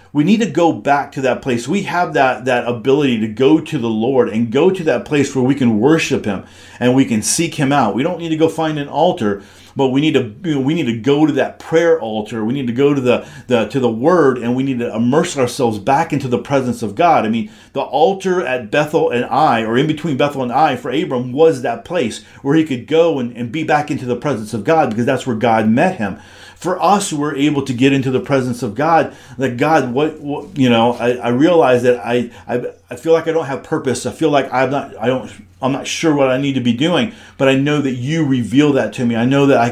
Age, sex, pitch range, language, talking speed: 40-59, male, 120-150 Hz, English, 260 wpm